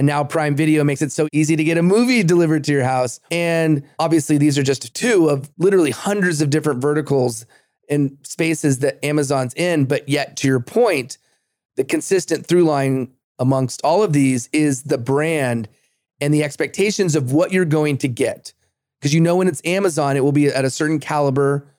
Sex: male